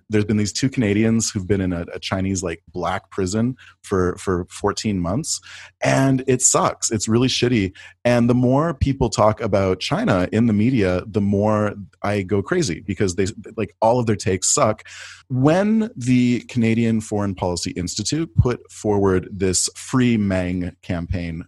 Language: English